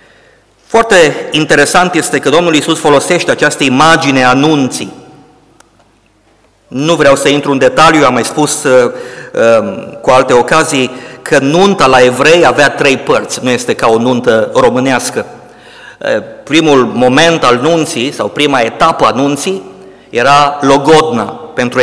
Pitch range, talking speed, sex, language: 130-165 Hz, 130 wpm, male, Romanian